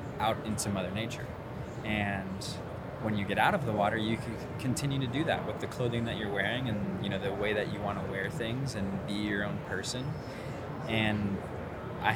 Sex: male